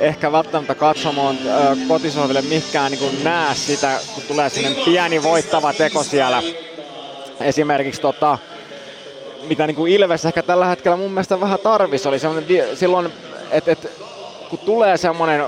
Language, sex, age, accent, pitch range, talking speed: Finnish, male, 20-39, native, 140-170 Hz, 135 wpm